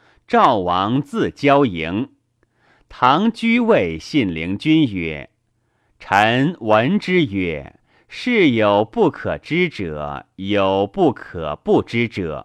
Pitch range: 95-150 Hz